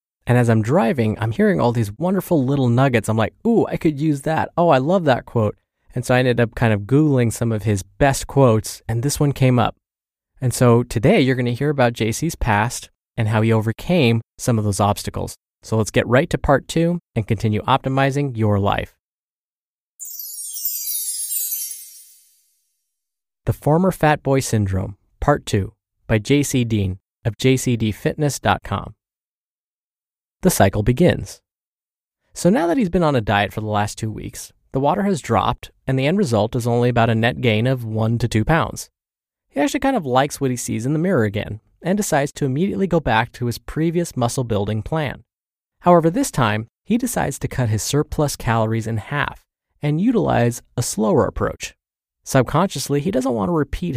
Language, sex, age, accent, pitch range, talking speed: English, male, 20-39, American, 110-145 Hz, 185 wpm